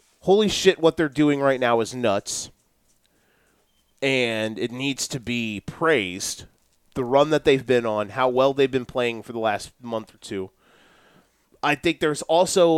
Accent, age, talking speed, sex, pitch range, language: American, 30-49, 170 wpm, male, 125-165 Hz, English